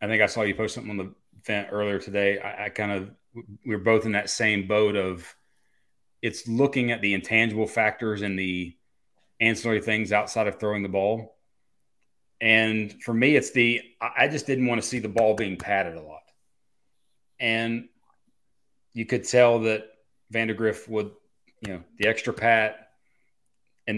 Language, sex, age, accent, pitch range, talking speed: English, male, 30-49, American, 105-120 Hz, 170 wpm